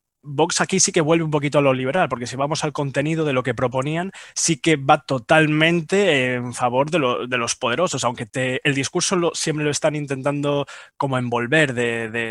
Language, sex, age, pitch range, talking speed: Spanish, male, 20-39, 125-150 Hz, 190 wpm